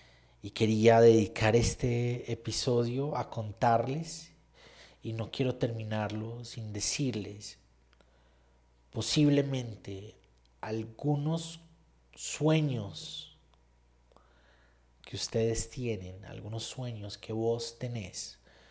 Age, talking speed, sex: 30-49, 75 wpm, male